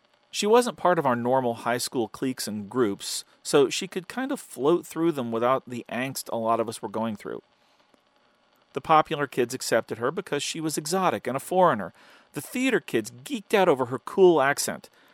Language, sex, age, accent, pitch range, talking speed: English, male, 40-59, American, 120-175 Hz, 200 wpm